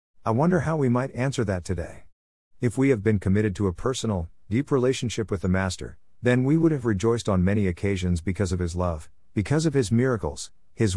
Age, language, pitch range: 50-69, English, 90-115 Hz